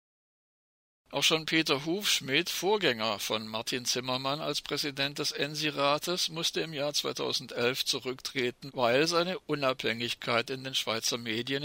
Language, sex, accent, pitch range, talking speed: German, male, German, 120-145 Hz, 125 wpm